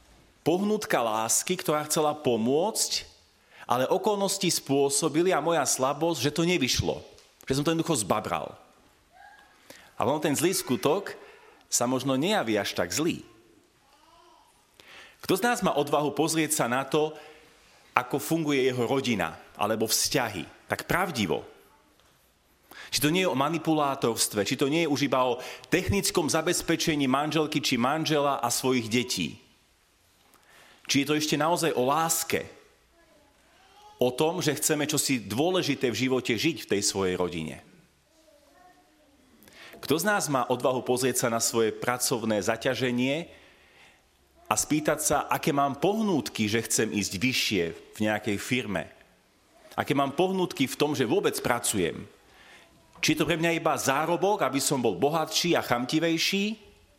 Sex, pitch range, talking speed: male, 125-170 Hz, 140 wpm